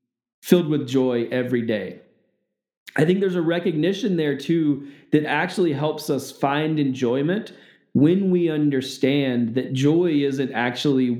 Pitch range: 125-155 Hz